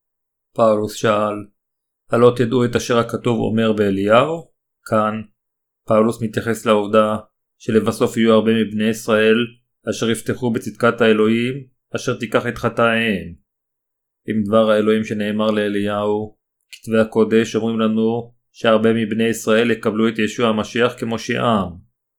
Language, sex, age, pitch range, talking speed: Hebrew, male, 40-59, 110-120 Hz, 115 wpm